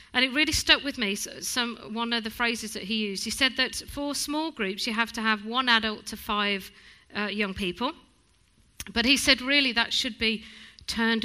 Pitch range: 205-250 Hz